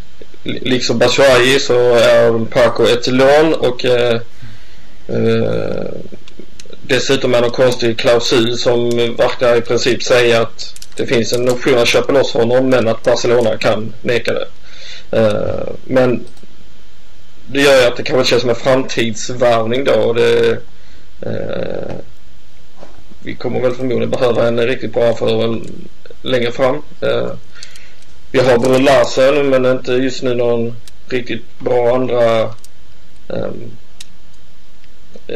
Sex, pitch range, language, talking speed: male, 115-130 Hz, Swedish, 130 wpm